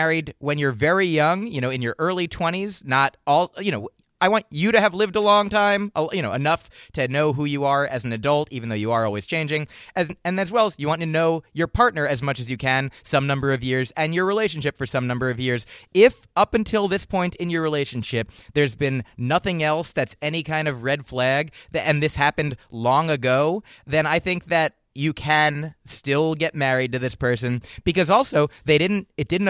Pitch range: 135-175 Hz